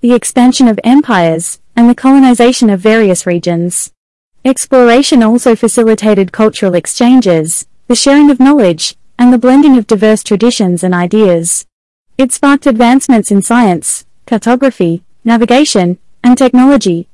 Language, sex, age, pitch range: Chinese, female, 30-49, 200-260 Hz